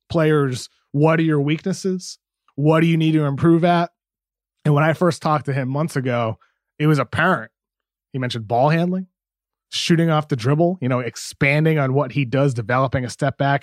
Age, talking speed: 30-49, 190 wpm